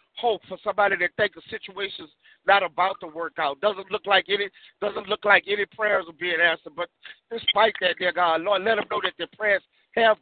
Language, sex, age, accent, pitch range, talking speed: English, male, 50-69, American, 160-190 Hz, 215 wpm